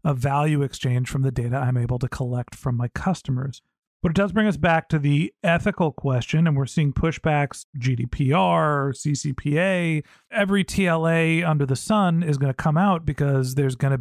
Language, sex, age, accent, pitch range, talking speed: English, male, 40-59, American, 135-165 Hz, 185 wpm